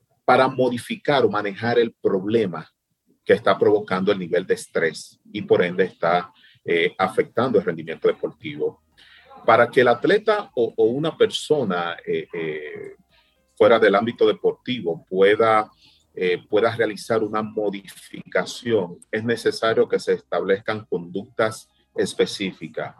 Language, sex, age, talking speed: Spanish, male, 40-59, 130 wpm